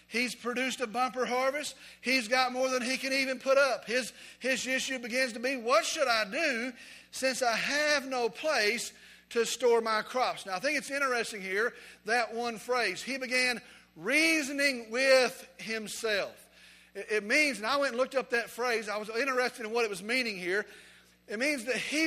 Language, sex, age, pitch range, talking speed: English, male, 40-59, 235-280 Hz, 195 wpm